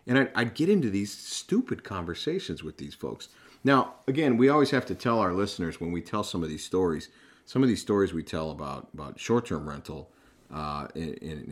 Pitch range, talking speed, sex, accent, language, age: 80-100 Hz, 205 wpm, male, American, English, 40-59